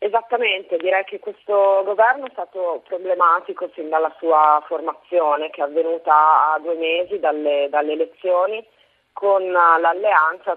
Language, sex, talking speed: Italian, female, 130 wpm